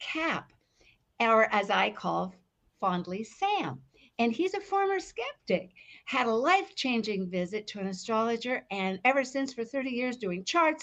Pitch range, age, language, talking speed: 165-245 Hz, 60-79, English, 150 wpm